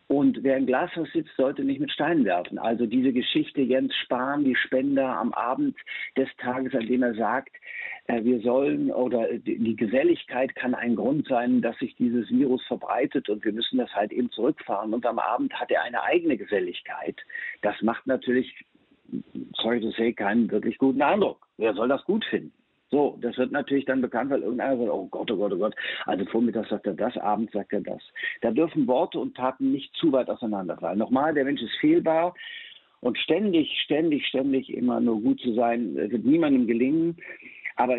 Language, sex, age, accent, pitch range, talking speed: German, male, 50-69, German, 110-140 Hz, 190 wpm